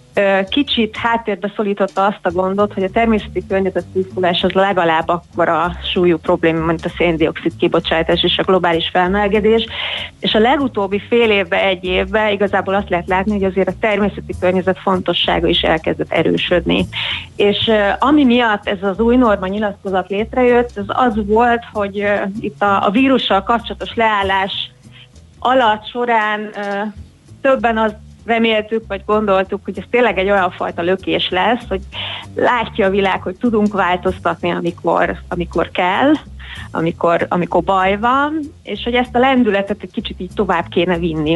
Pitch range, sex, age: 180-220 Hz, female, 30-49